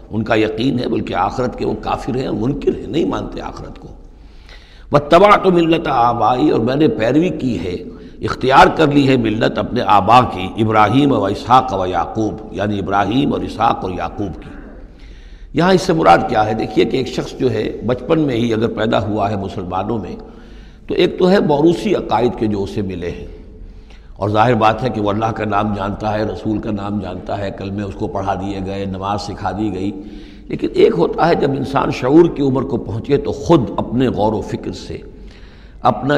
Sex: male